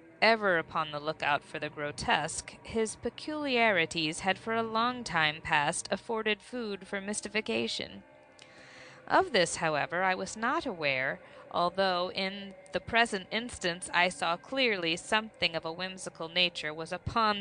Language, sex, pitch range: English, female, 165-230 Hz